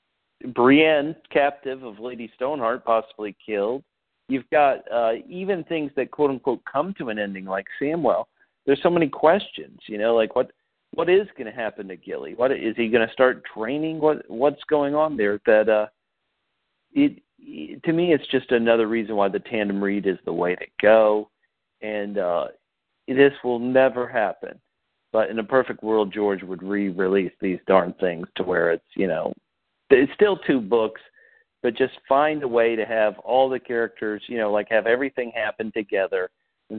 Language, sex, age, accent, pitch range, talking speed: English, male, 40-59, American, 105-140 Hz, 180 wpm